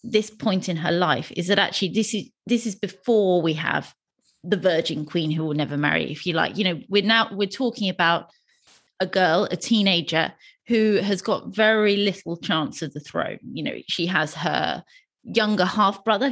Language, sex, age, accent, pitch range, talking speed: English, female, 20-39, British, 170-215 Hz, 190 wpm